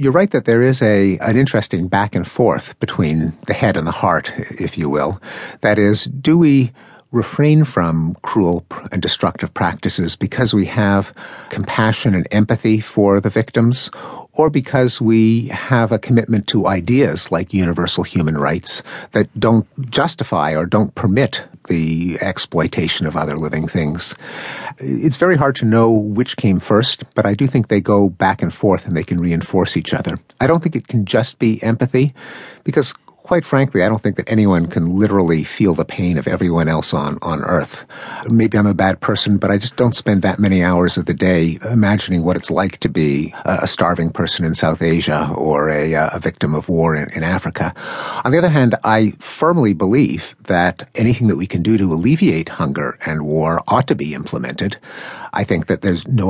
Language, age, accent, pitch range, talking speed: English, 50-69, American, 85-115 Hz, 190 wpm